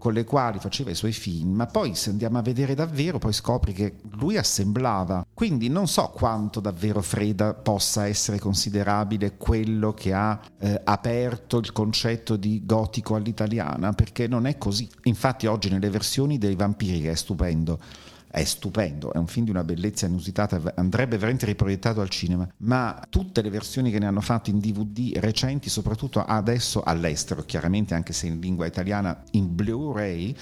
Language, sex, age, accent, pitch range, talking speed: Italian, male, 50-69, native, 100-125 Hz, 170 wpm